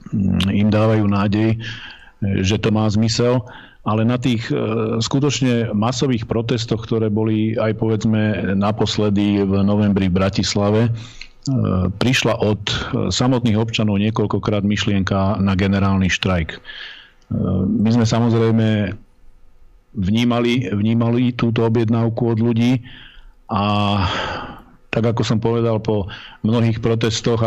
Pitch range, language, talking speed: 100-115 Hz, Slovak, 105 wpm